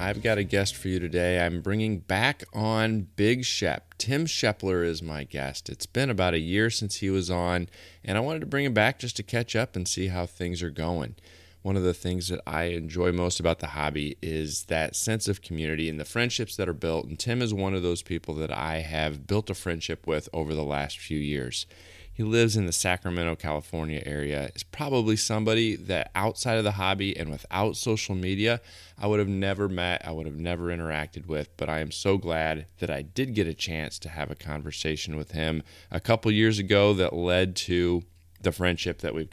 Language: English